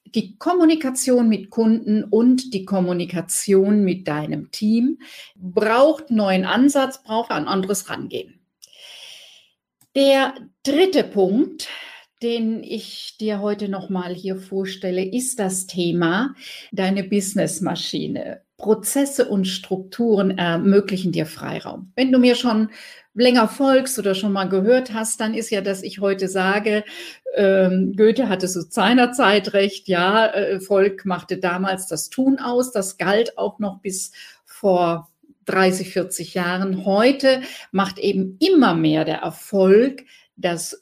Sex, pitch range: female, 190-255 Hz